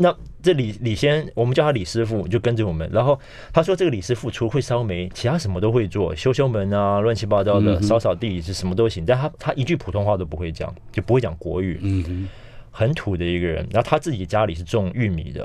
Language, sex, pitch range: Chinese, male, 90-120 Hz